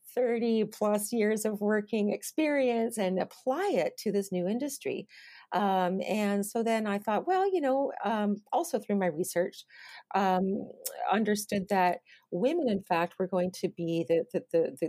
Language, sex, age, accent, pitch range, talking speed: English, female, 40-59, American, 195-255 Hz, 155 wpm